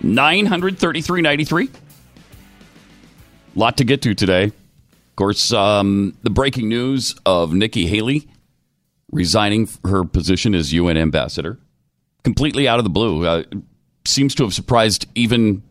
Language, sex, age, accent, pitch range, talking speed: English, male, 40-59, American, 85-125 Hz, 135 wpm